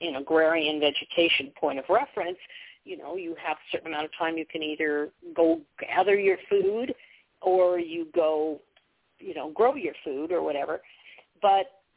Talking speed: 165 wpm